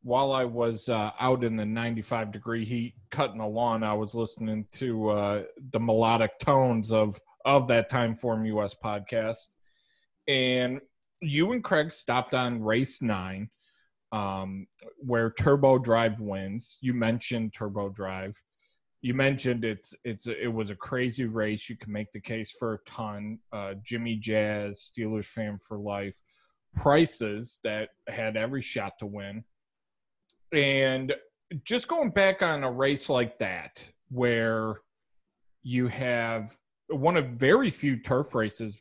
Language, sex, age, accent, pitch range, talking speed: English, male, 30-49, American, 110-130 Hz, 140 wpm